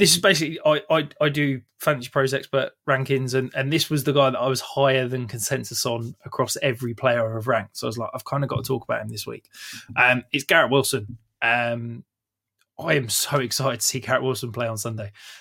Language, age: English, 20-39